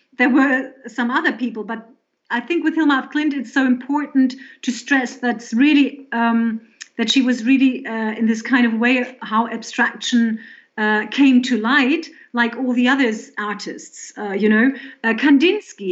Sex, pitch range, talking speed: female, 220-275 Hz, 175 wpm